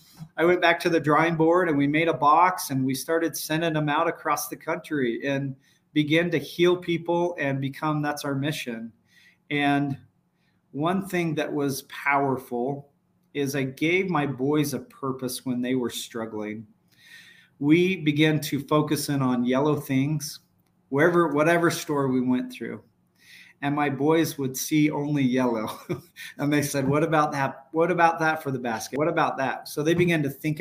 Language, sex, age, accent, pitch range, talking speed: English, male, 40-59, American, 130-155 Hz, 175 wpm